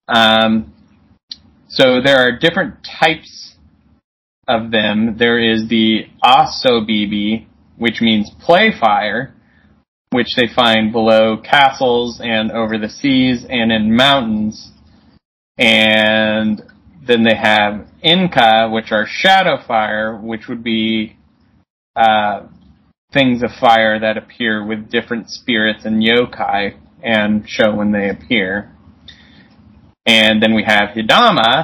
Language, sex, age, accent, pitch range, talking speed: English, male, 20-39, American, 110-120 Hz, 115 wpm